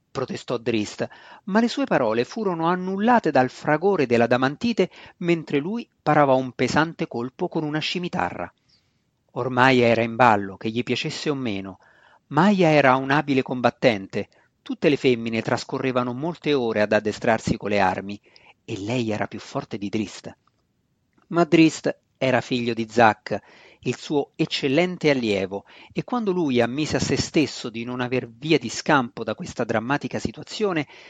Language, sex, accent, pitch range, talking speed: Italian, male, native, 115-160 Hz, 155 wpm